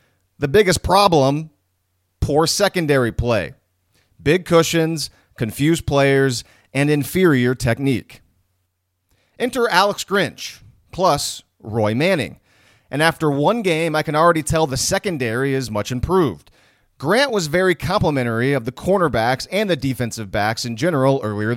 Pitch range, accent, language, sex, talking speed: 115-170 Hz, American, English, male, 130 wpm